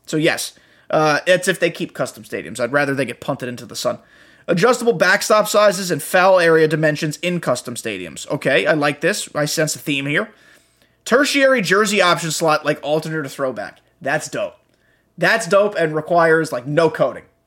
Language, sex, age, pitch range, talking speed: English, male, 20-39, 150-205 Hz, 180 wpm